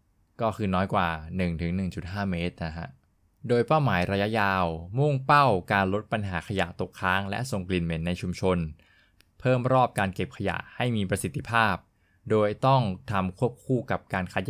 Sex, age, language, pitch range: male, 20-39, Thai, 90-115 Hz